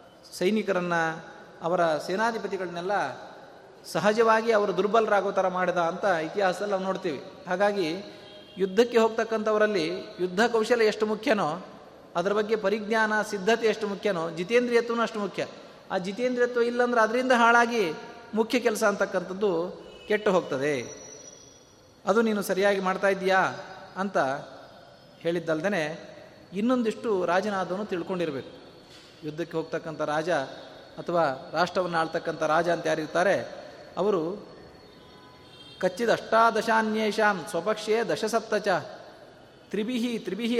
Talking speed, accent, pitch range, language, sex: 95 wpm, native, 180-225 Hz, Kannada, male